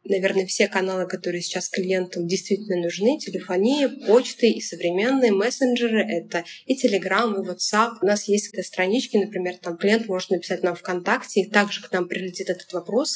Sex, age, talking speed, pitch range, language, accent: female, 20-39, 165 wpm, 190-235 Hz, Russian, native